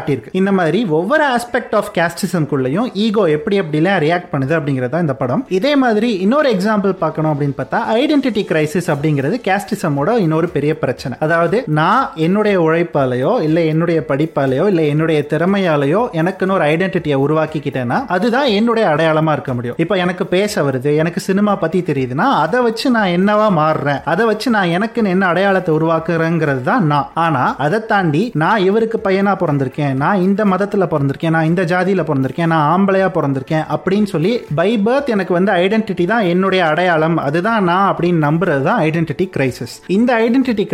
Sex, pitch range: male, 155-205 Hz